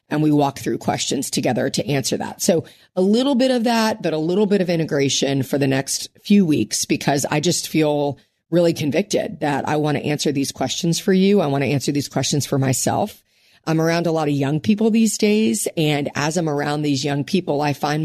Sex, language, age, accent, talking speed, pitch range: female, English, 40-59, American, 225 wpm, 145-185 Hz